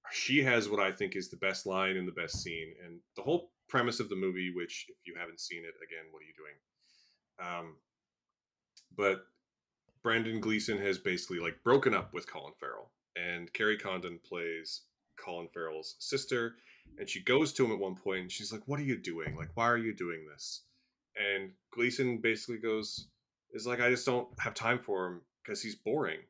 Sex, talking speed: male, 200 wpm